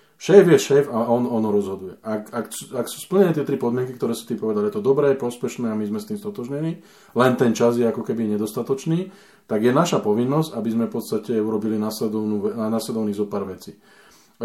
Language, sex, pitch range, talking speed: Slovak, male, 110-160 Hz, 210 wpm